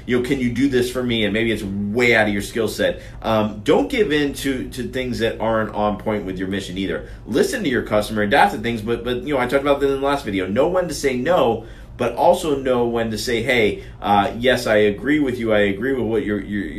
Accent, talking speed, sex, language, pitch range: American, 270 wpm, male, English, 105-125 Hz